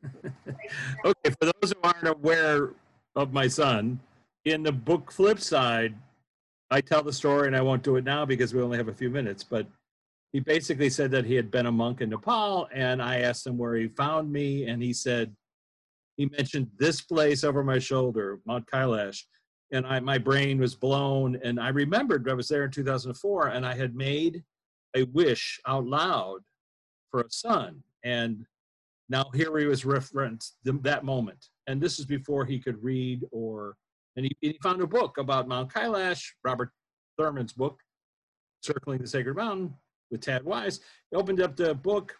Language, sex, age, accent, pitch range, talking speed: English, male, 40-59, American, 125-160 Hz, 180 wpm